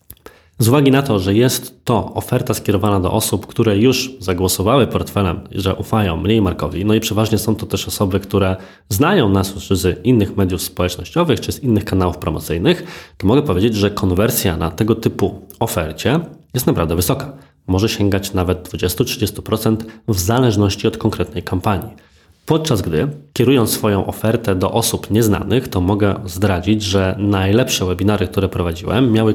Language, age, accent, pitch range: Polish, 20-39, native, 95-115 Hz